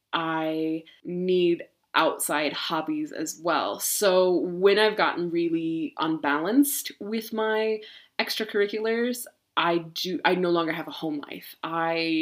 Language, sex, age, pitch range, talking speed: English, female, 20-39, 170-220 Hz, 125 wpm